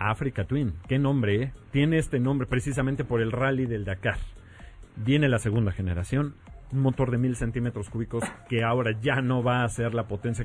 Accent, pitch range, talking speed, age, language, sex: Mexican, 110-135 Hz, 190 wpm, 40-59, Spanish, male